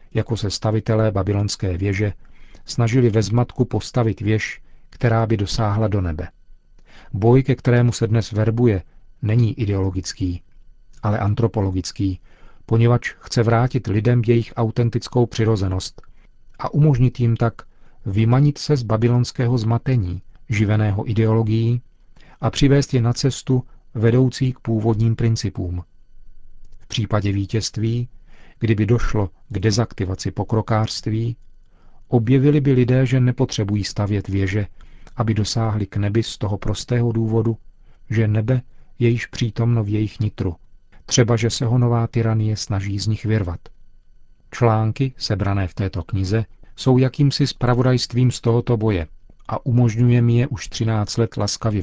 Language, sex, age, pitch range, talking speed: Czech, male, 40-59, 100-120 Hz, 130 wpm